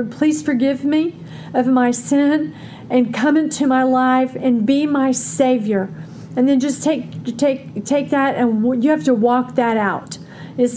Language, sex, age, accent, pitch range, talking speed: English, female, 50-69, American, 215-260 Hz, 165 wpm